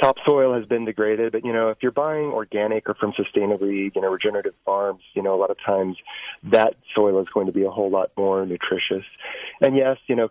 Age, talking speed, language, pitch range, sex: 30-49, 225 wpm, English, 95-120 Hz, male